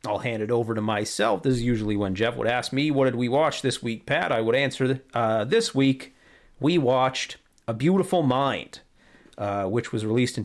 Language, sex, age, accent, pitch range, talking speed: English, male, 40-59, American, 115-150 Hz, 215 wpm